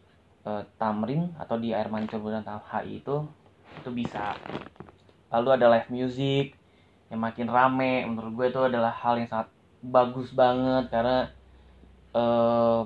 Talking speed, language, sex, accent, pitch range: 130 wpm, Indonesian, male, native, 110-130 Hz